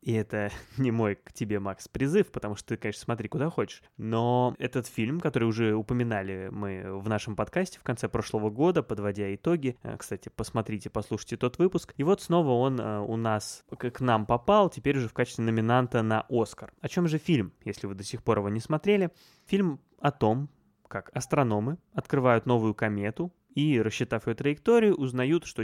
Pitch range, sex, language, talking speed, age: 110-145 Hz, male, Russian, 185 wpm, 20-39